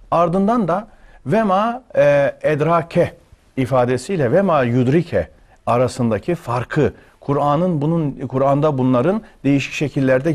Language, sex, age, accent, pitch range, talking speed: Turkish, male, 40-59, native, 110-170 Hz, 85 wpm